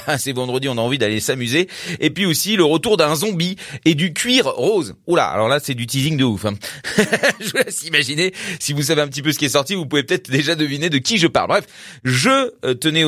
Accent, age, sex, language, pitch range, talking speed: French, 30-49, male, French, 135-195 Hz, 250 wpm